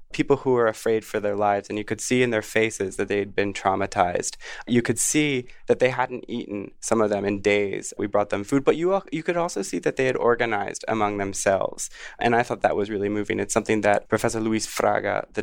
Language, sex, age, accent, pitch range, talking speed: English, male, 20-39, American, 100-120 Hz, 235 wpm